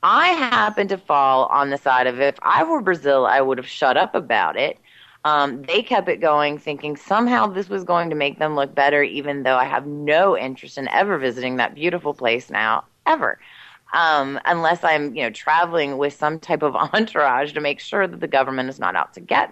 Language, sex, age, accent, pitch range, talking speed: English, female, 30-49, American, 140-200 Hz, 215 wpm